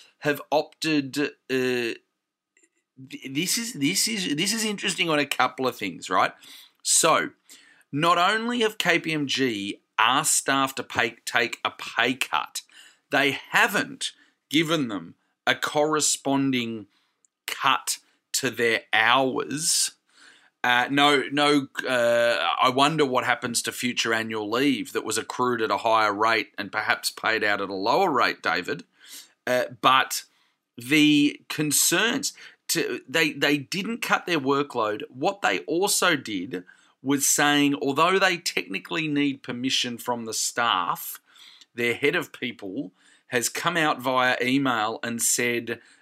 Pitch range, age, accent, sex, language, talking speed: 120-155 Hz, 30-49, Australian, male, English, 135 wpm